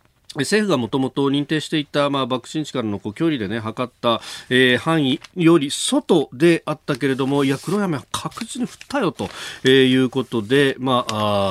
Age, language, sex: 40-59, Japanese, male